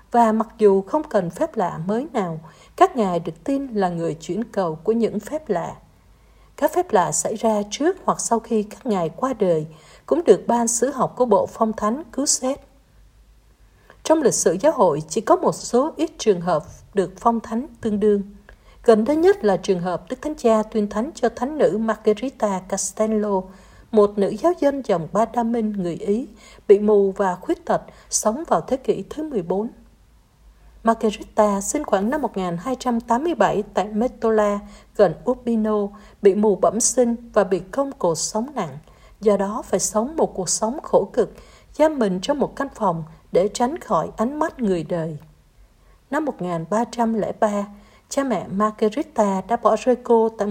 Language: Vietnamese